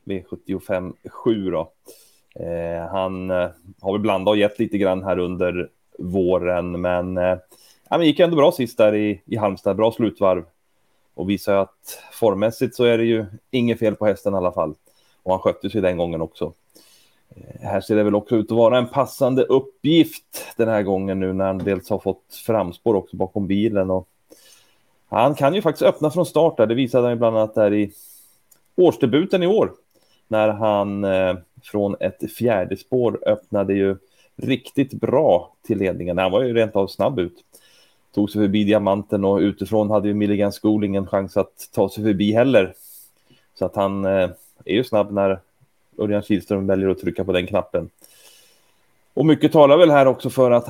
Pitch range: 95-115 Hz